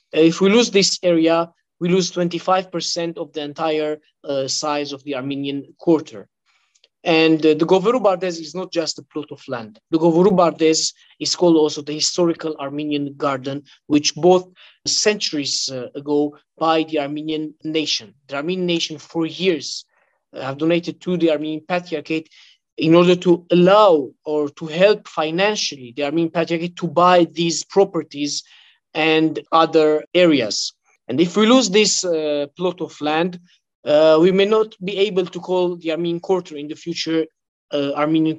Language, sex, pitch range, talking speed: English, male, 155-185 Hz, 160 wpm